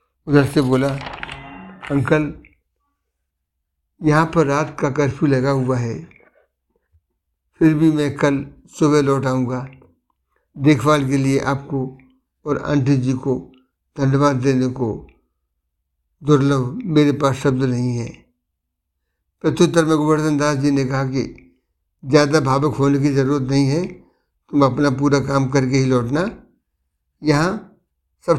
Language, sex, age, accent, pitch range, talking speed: Hindi, male, 60-79, native, 130-145 Hz, 130 wpm